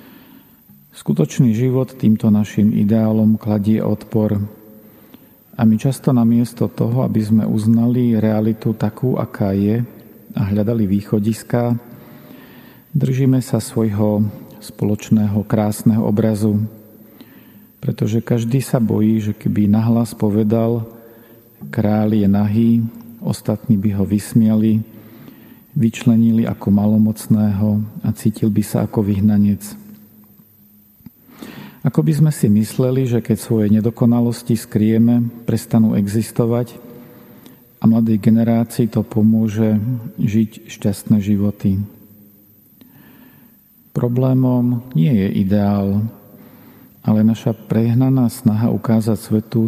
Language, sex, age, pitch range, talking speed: Slovak, male, 40-59, 105-115 Hz, 100 wpm